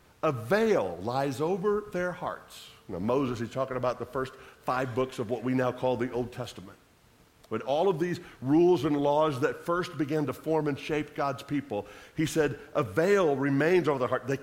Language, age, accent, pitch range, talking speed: English, 50-69, American, 140-195 Hz, 200 wpm